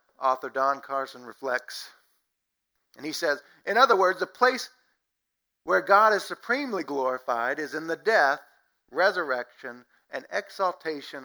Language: English